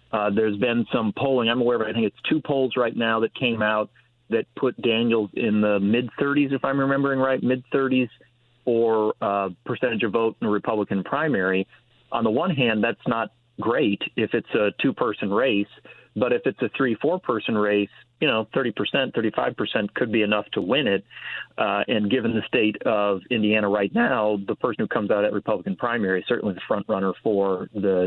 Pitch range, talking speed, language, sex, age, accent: 105-120 Hz, 190 wpm, English, male, 40-59, American